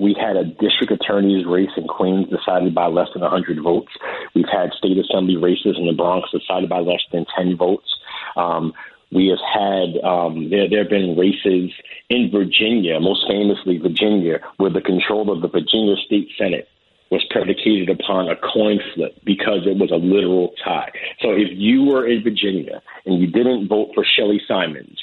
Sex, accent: male, American